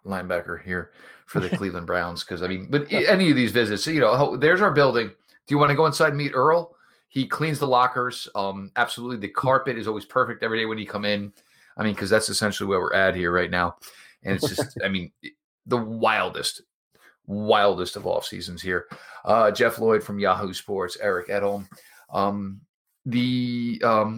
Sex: male